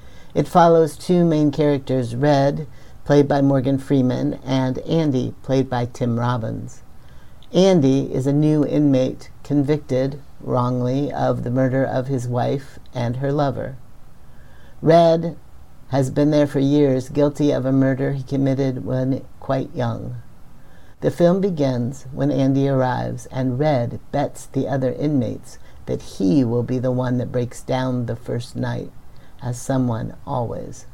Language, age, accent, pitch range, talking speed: English, 60-79, American, 125-150 Hz, 145 wpm